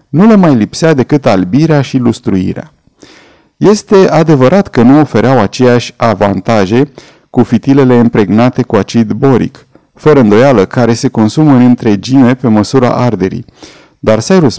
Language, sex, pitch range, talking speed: Romanian, male, 115-150 Hz, 135 wpm